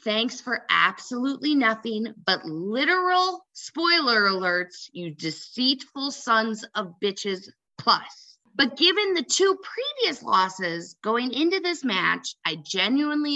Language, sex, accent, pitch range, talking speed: English, female, American, 195-285 Hz, 115 wpm